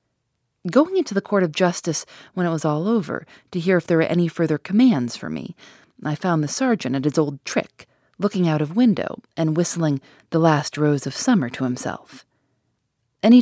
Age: 30-49